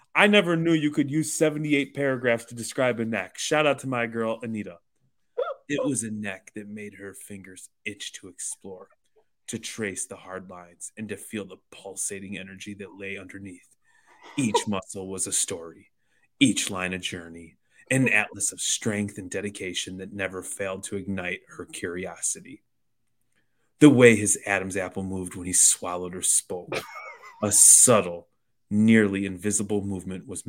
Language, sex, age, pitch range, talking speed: English, male, 30-49, 95-115 Hz, 160 wpm